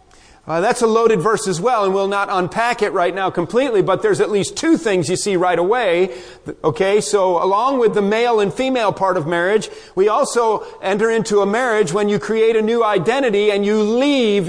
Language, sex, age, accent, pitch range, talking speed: English, male, 40-59, American, 190-245 Hz, 210 wpm